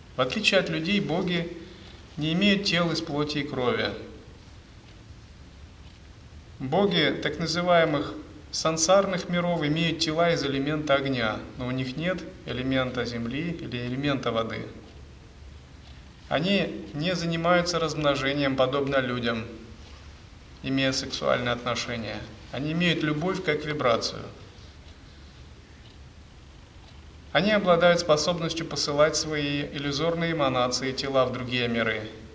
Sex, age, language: male, 30-49, Russian